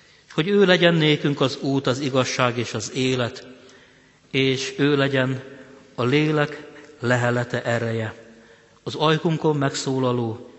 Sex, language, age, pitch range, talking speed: male, Hungarian, 50-69, 120-145 Hz, 120 wpm